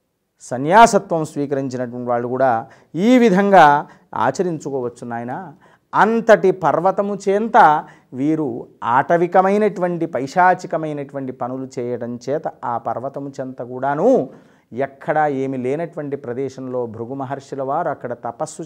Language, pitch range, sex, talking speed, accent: Telugu, 125-175 Hz, male, 95 wpm, native